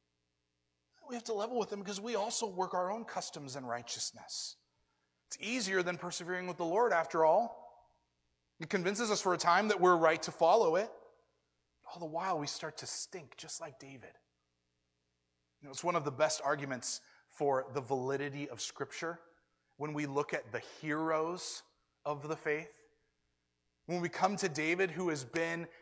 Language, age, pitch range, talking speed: English, 30-49, 130-185 Hz, 170 wpm